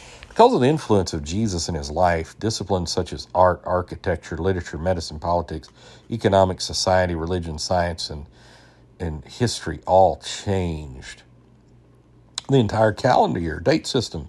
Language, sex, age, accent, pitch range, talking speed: English, male, 50-69, American, 85-100 Hz, 135 wpm